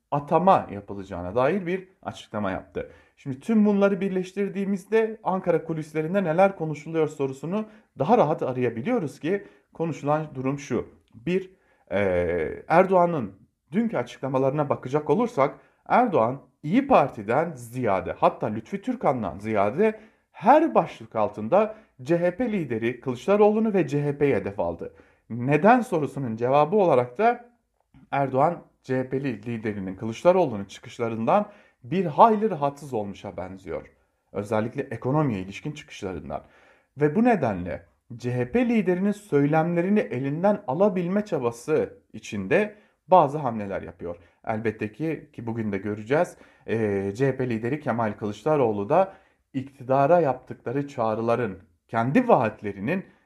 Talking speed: 110 wpm